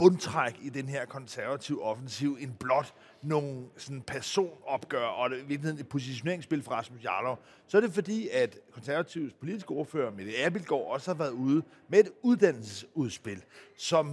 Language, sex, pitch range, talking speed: Danish, male, 140-185 Hz, 155 wpm